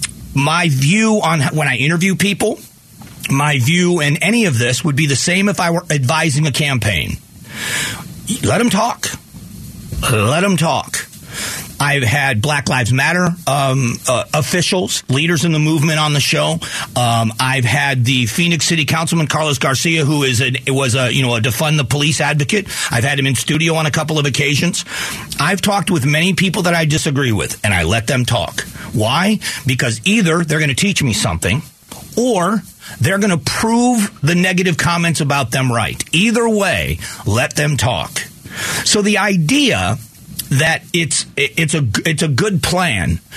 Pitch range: 135-175 Hz